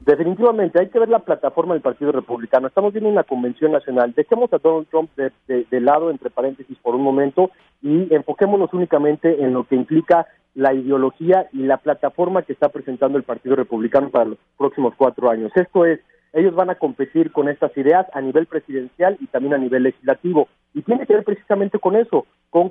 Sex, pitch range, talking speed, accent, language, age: male, 135-170 Hz, 200 wpm, Mexican, Spanish, 40-59